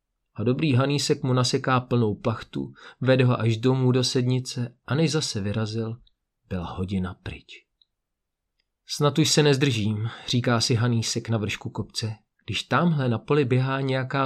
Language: Czech